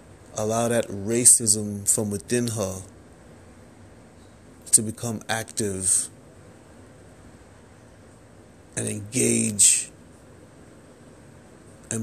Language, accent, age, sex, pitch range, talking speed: English, American, 30-49, male, 105-120 Hz, 60 wpm